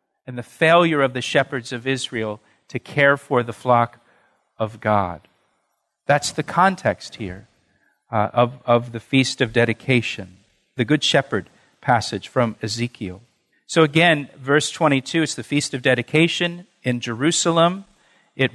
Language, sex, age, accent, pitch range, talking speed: English, male, 50-69, American, 130-165 Hz, 140 wpm